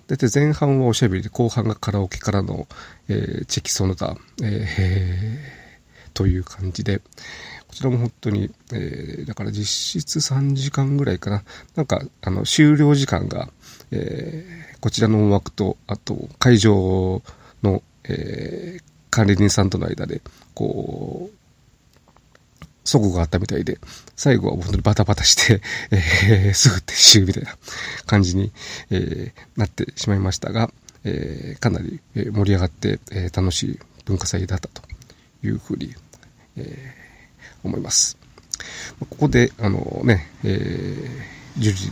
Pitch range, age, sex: 95-130 Hz, 40-59, male